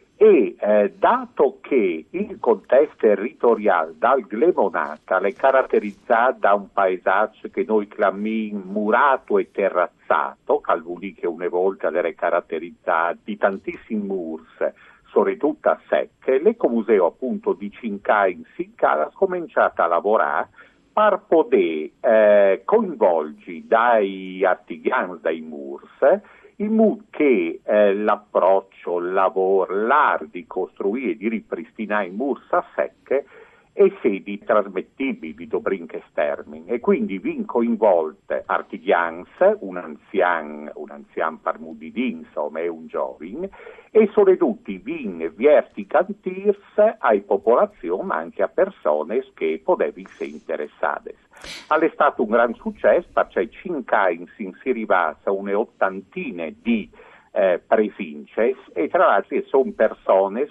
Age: 50-69